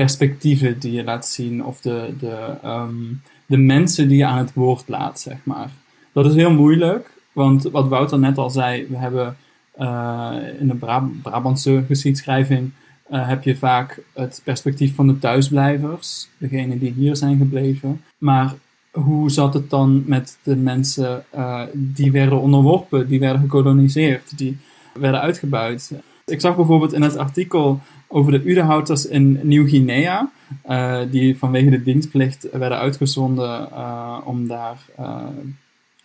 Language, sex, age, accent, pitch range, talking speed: Dutch, male, 20-39, Dutch, 130-145 Hz, 150 wpm